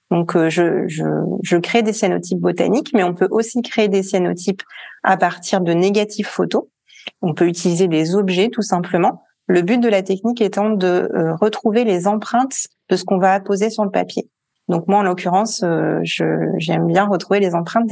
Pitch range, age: 175-215 Hz, 30-49